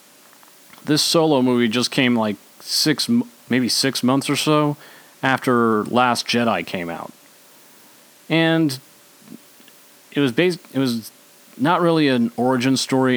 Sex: male